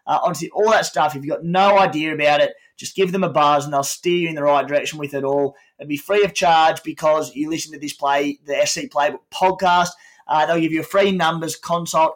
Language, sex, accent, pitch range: English, male, Australian, 150-185 Hz